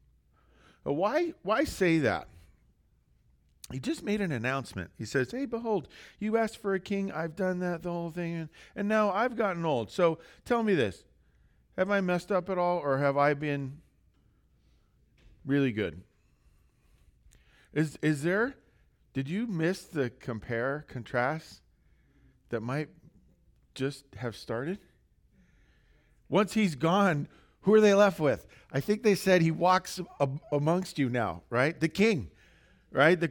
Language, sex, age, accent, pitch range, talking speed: English, male, 50-69, American, 120-185 Hz, 150 wpm